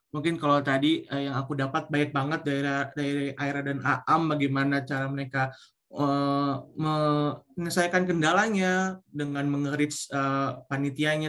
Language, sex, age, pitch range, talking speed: Indonesian, male, 20-39, 140-165 Hz, 120 wpm